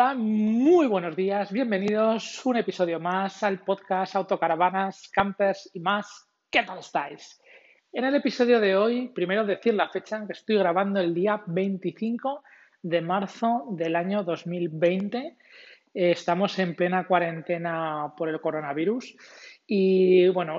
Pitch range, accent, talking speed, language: 170-205 Hz, Spanish, 130 wpm, Spanish